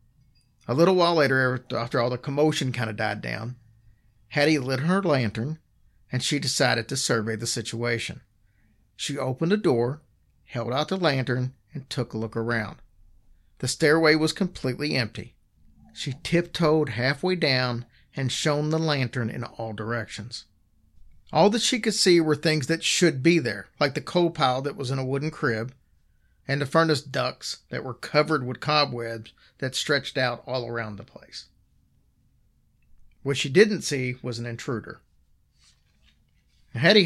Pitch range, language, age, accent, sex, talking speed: 115-150 Hz, English, 50-69, American, male, 155 wpm